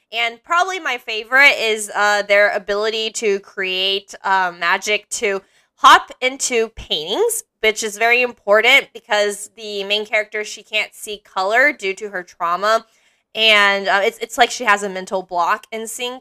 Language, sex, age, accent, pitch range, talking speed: English, female, 20-39, American, 200-255 Hz, 165 wpm